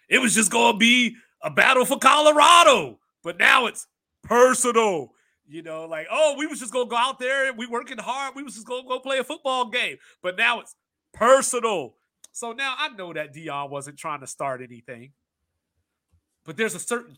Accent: American